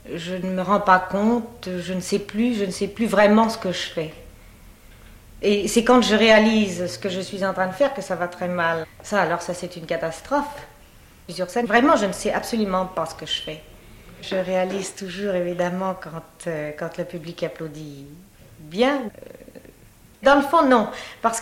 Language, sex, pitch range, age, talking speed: French, female, 175-225 Hz, 40-59, 195 wpm